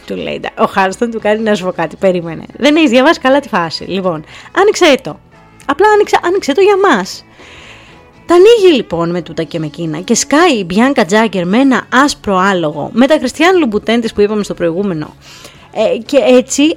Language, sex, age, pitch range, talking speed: Greek, female, 30-49, 180-245 Hz, 190 wpm